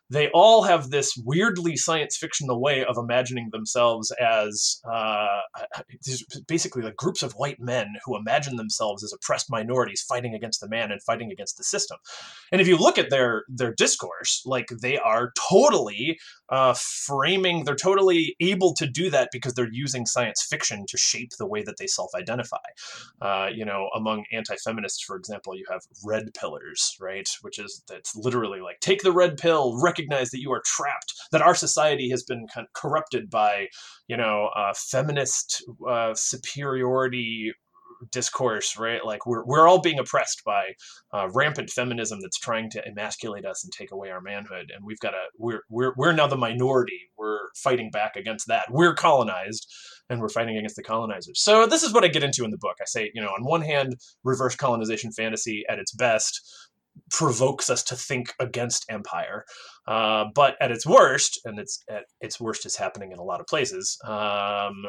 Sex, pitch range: male, 110-165 Hz